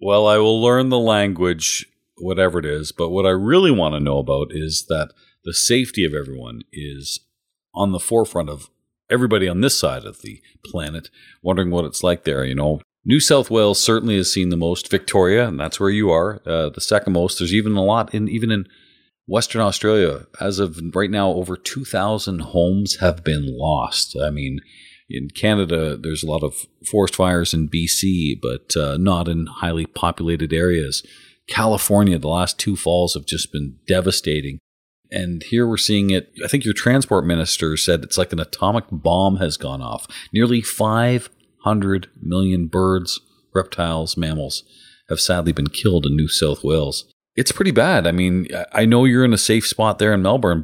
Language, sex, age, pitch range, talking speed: English, male, 40-59, 80-105 Hz, 185 wpm